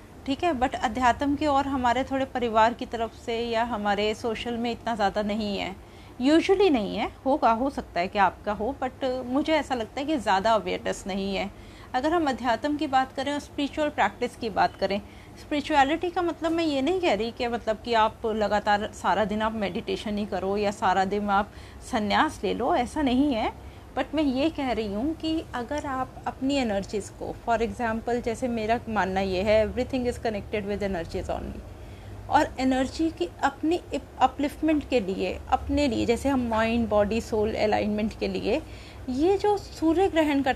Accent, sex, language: native, female, Hindi